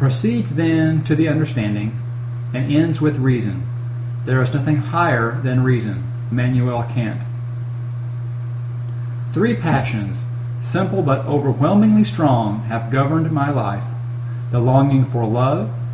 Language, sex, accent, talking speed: English, male, American, 115 wpm